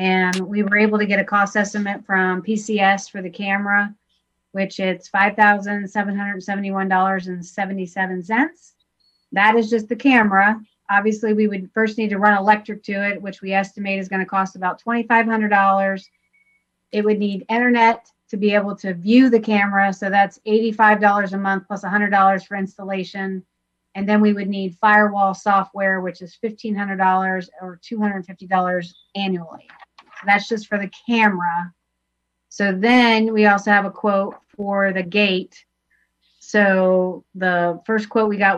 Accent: American